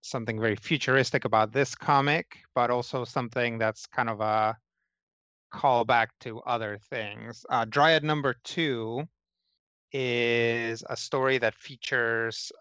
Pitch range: 110-135 Hz